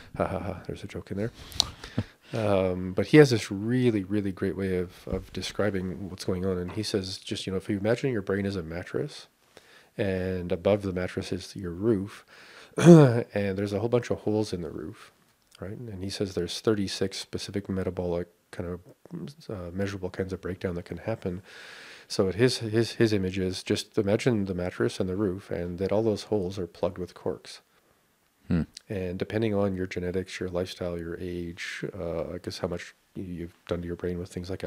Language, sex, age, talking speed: English, male, 40-59, 205 wpm